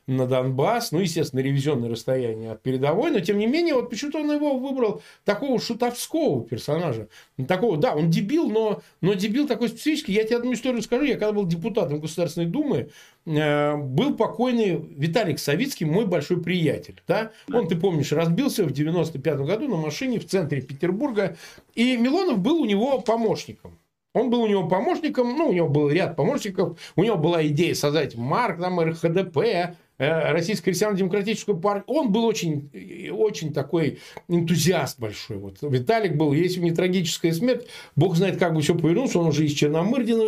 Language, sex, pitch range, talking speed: Russian, male, 155-225 Hz, 175 wpm